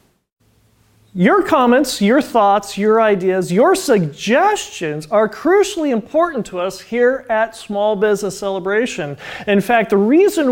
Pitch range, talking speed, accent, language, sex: 185-275 Hz, 125 wpm, American, English, male